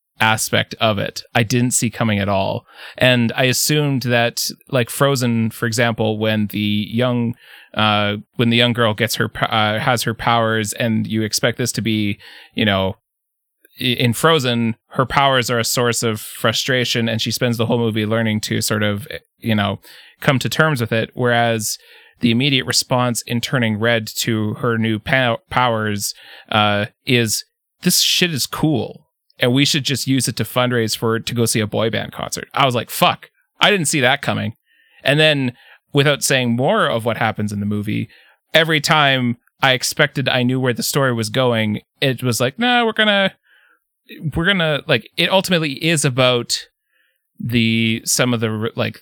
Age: 30-49